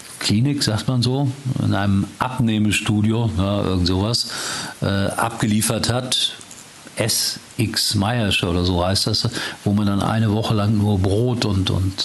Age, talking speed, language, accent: 50-69, 140 wpm, German, German